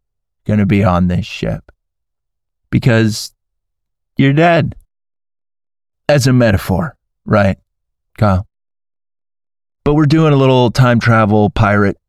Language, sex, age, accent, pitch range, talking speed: English, male, 30-49, American, 95-115 Hz, 105 wpm